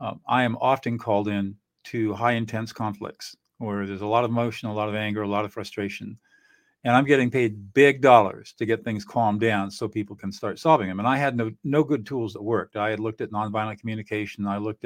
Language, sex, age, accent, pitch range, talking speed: English, male, 50-69, American, 105-125 Hz, 235 wpm